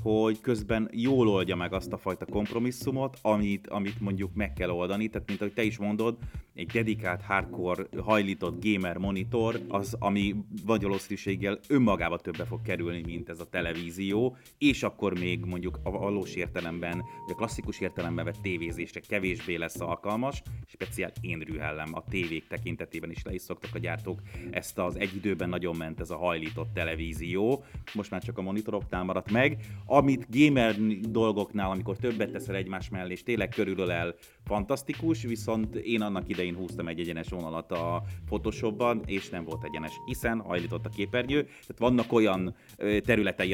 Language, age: Hungarian, 30-49